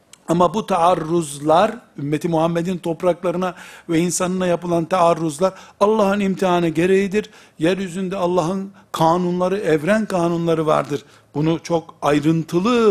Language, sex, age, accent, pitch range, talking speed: Turkish, male, 60-79, native, 165-195 Hz, 100 wpm